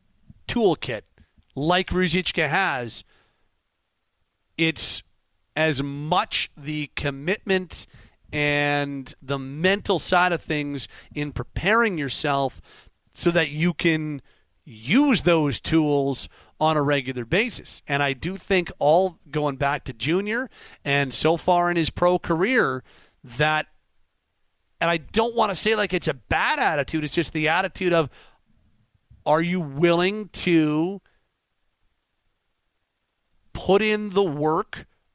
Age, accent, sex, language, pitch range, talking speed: 40-59, American, male, English, 140-185 Hz, 120 wpm